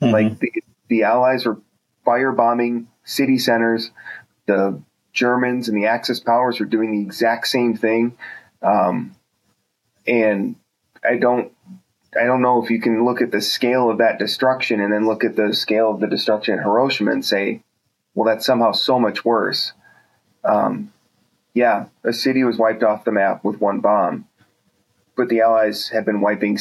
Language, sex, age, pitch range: English, male, 30-49, 110-125 Hz